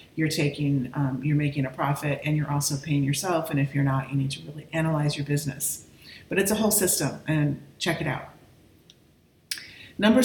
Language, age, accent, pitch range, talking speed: English, 40-59, American, 145-170 Hz, 195 wpm